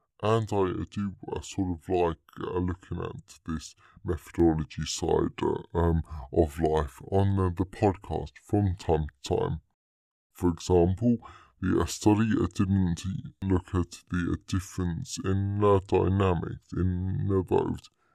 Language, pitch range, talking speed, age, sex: English, 85-100 Hz, 125 wpm, 20-39, female